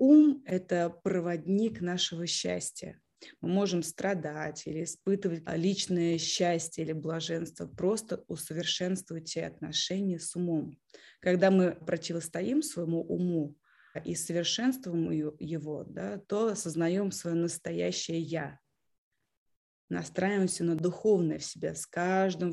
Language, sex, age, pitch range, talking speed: Russian, female, 20-39, 165-190 Hz, 110 wpm